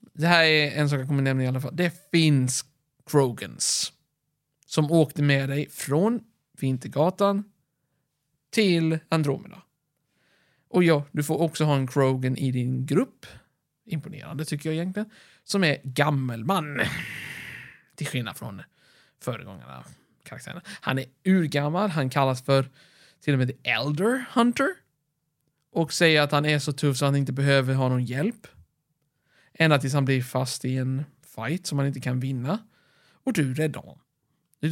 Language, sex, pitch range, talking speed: Swedish, male, 140-165 Hz, 160 wpm